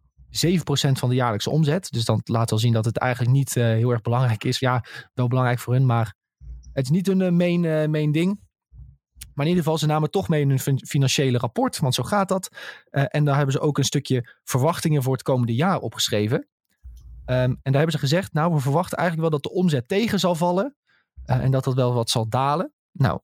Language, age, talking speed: Dutch, 20-39, 230 wpm